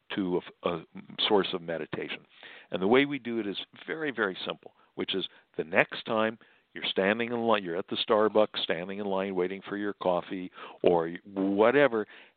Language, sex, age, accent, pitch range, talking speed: English, male, 60-79, American, 95-120 Hz, 185 wpm